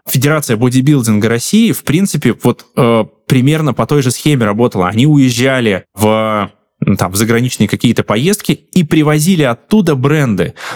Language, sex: Russian, male